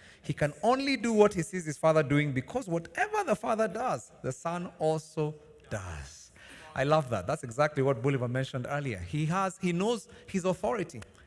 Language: English